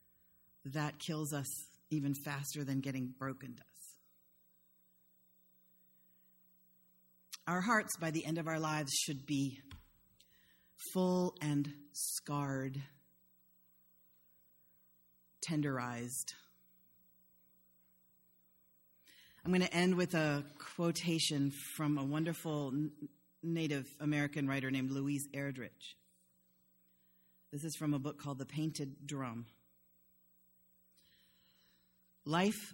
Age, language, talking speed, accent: 40-59, English, 90 wpm, American